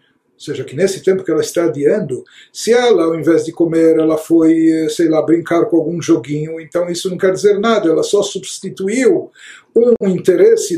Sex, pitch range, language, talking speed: male, 170-220 Hz, Portuguese, 190 wpm